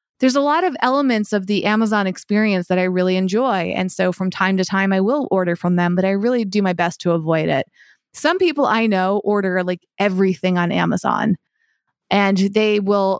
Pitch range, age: 185-220 Hz, 20-39